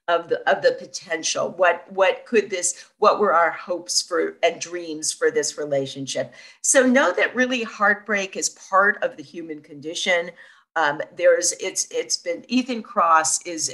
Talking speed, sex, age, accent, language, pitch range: 170 wpm, female, 50-69, American, English, 160-255 Hz